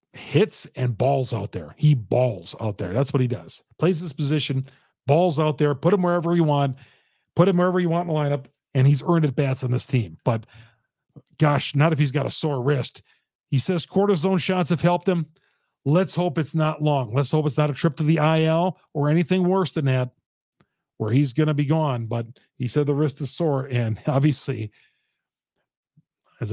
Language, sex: English, male